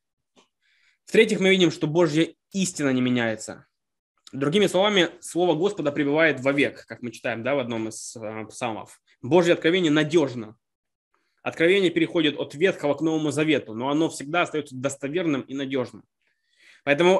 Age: 20-39